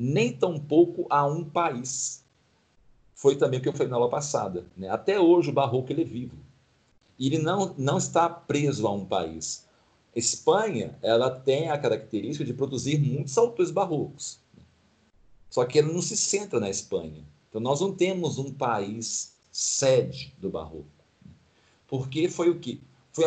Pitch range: 105-155 Hz